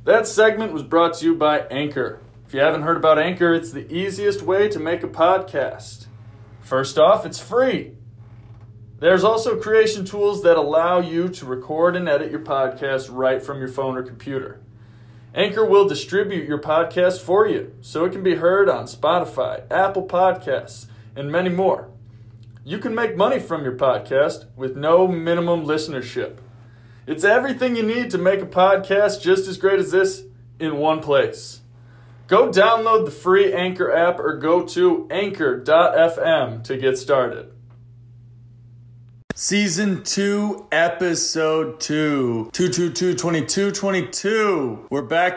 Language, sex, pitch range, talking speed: English, male, 130-185 Hz, 150 wpm